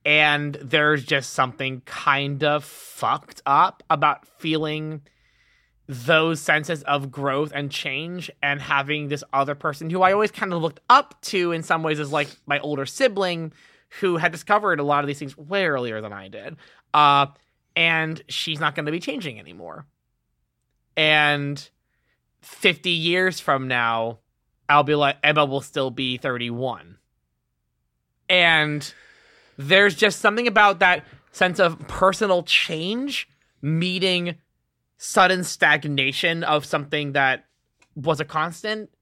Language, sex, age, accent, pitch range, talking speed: English, male, 20-39, American, 135-165 Hz, 140 wpm